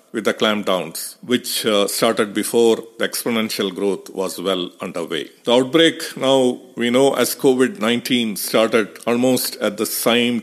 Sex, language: male, English